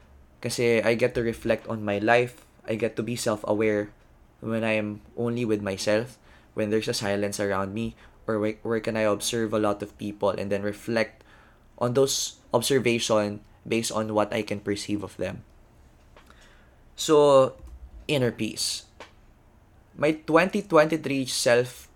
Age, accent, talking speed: 20-39, native, 150 wpm